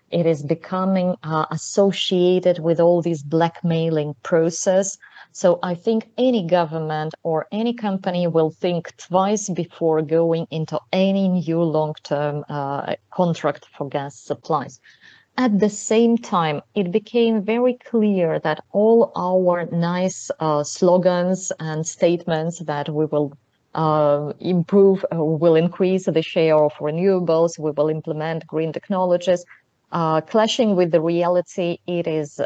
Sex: female